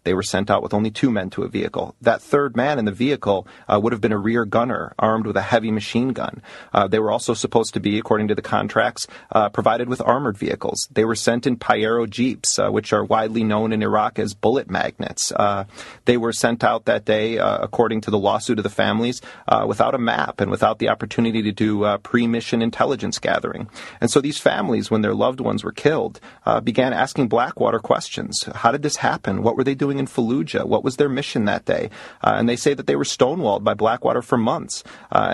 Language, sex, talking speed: English, male, 230 wpm